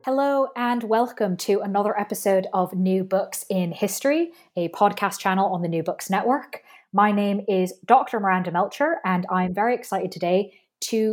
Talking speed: 165 wpm